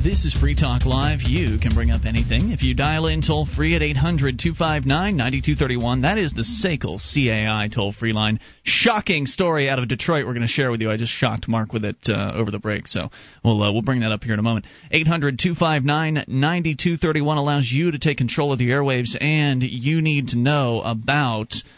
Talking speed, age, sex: 195 wpm, 30-49, male